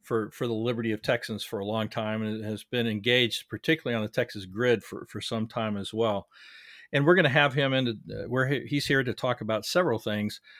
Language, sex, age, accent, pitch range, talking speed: English, male, 50-69, American, 110-135 Hz, 225 wpm